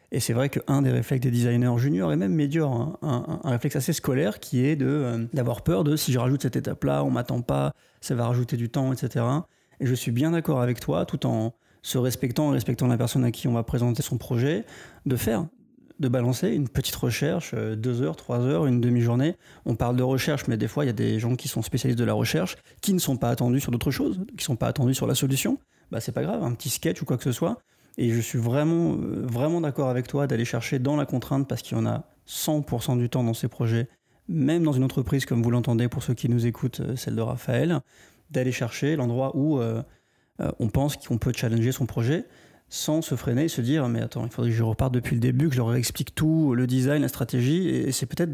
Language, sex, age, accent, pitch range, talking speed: French, male, 30-49, French, 120-145 Hz, 255 wpm